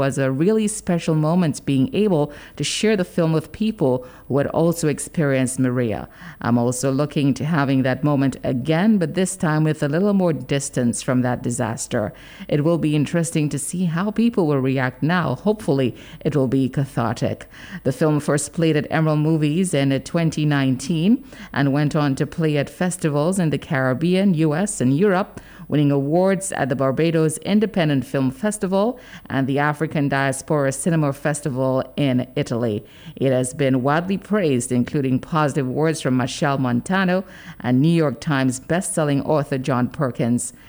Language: English